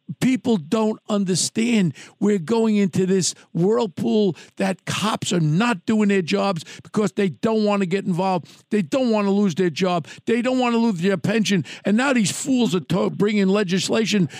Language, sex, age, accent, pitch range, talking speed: English, male, 50-69, American, 185-225 Hz, 185 wpm